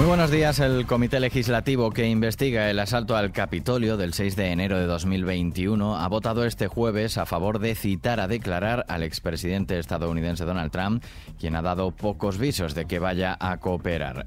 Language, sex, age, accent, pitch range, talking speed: Spanish, male, 20-39, Spanish, 85-105 Hz, 180 wpm